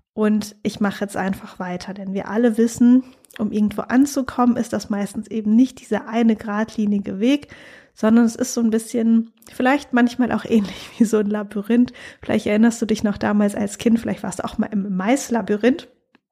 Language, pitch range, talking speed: German, 215-250 Hz, 190 wpm